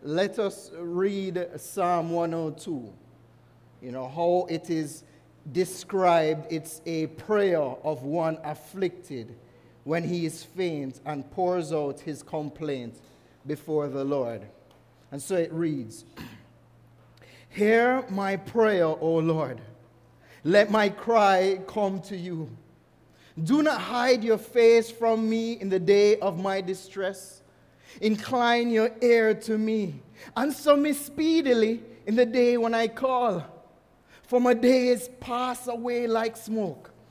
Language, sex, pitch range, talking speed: English, male, 160-230 Hz, 130 wpm